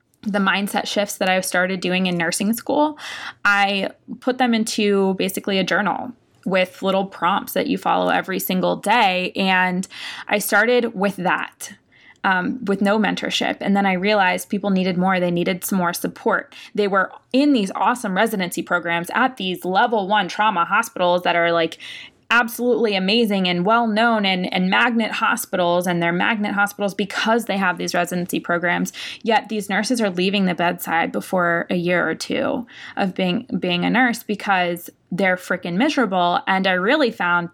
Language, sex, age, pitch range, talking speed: English, female, 20-39, 180-220 Hz, 175 wpm